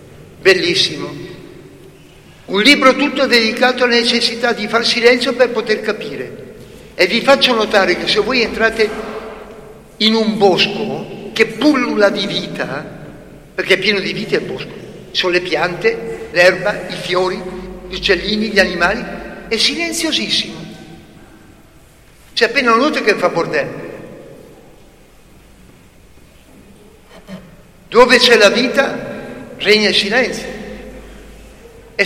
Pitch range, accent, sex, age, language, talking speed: 185-245 Hz, native, male, 60-79, Italian, 115 wpm